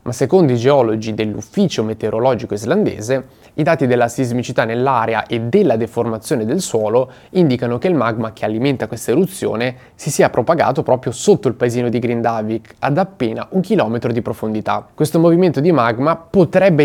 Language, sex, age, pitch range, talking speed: Italian, male, 20-39, 115-165 Hz, 160 wpm